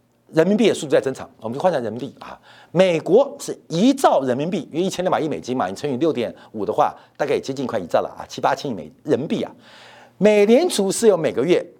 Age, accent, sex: 50-69, native, male